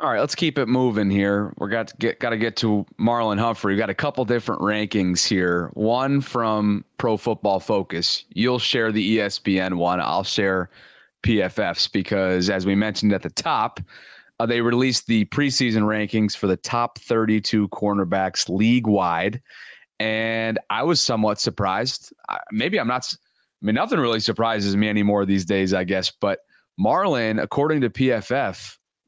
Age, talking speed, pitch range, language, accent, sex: 30-49, 165 wpm, 100-120 Hz, English, American, male